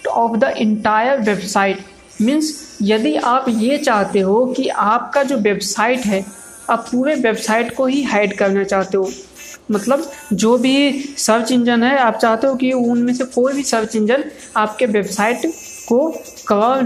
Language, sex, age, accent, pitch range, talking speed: Hindi, female, 50-69, native, 205-260 Hz, 155 wpm